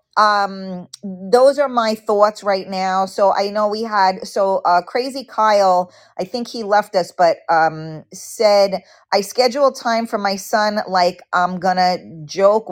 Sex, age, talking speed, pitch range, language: female, 40-59, 160 wpm, 175-220 Hz, English